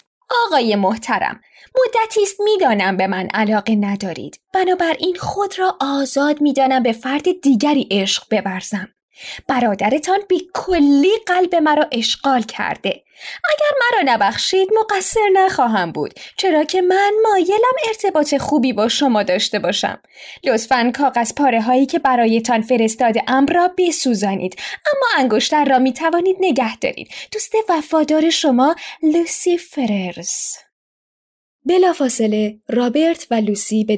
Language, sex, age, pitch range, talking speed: Persian, female, 10-29, 220-345 Hz, 125 wpm